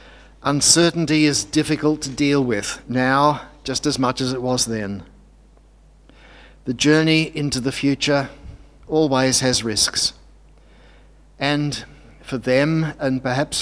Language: English